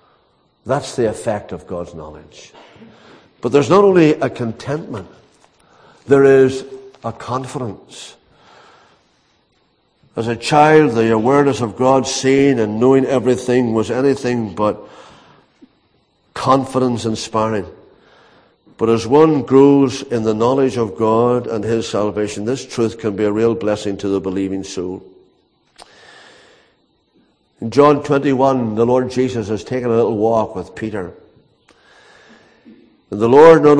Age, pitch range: 60-79, 105-135 Hz